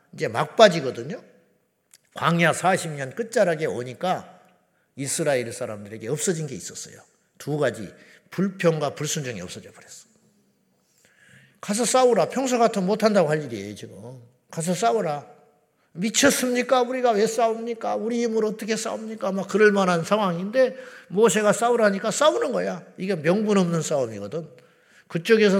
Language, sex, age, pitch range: Korean, male, 50-69, 150-225 Hz